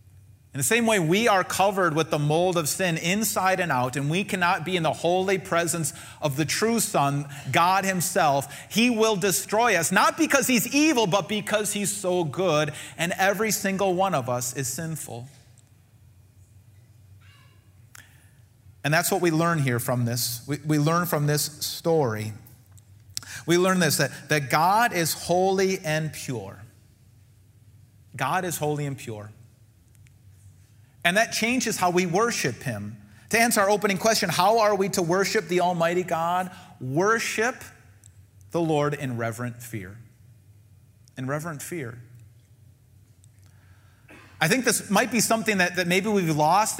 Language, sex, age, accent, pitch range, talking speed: English, male, 30-49, American, 115-185 Hz, 155 wpm